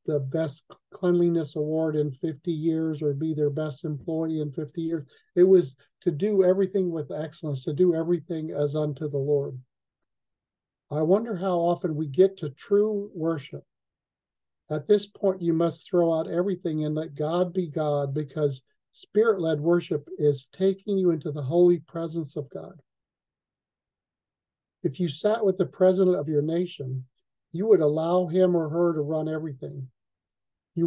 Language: English